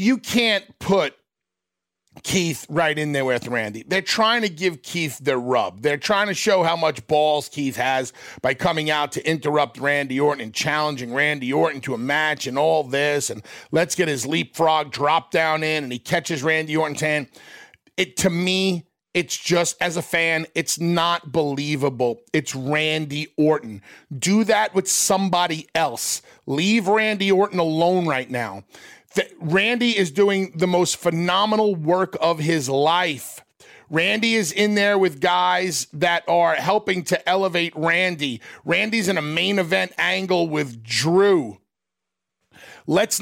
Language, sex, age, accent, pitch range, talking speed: English, male, 40-59, American, 150-200 Hz, 155 wpm